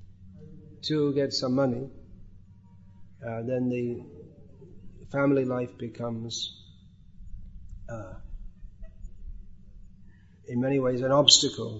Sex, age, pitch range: male, 40-59, 95-130 Hz